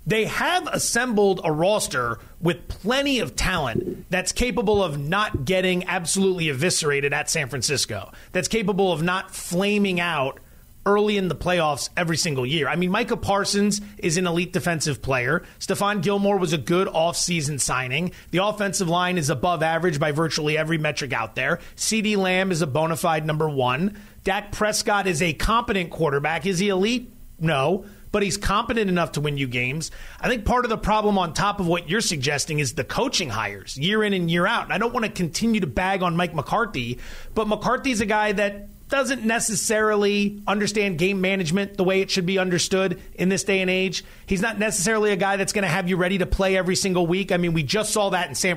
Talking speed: 200 wpm